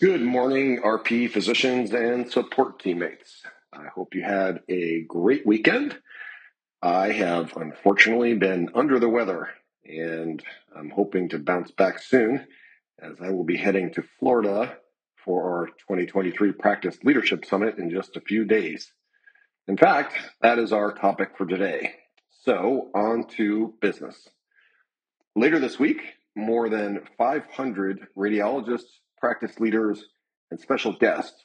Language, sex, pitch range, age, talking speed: English, male, 95-120 Hz, 40-59, 135 wpm